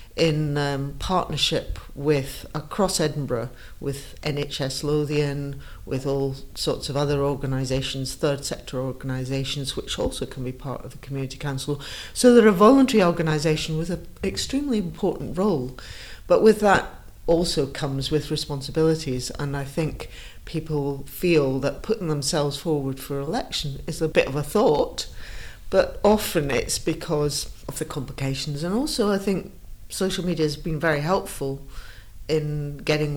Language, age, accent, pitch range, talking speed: English, 50-69, British, 135-165 Hz, 145 wpm